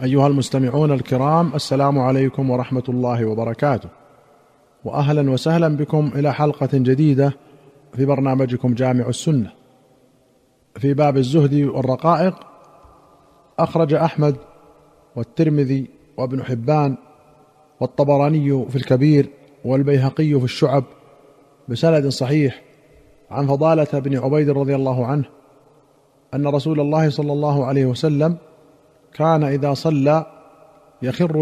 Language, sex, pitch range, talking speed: Arabic, male, 135-150 Hz, 100 wpm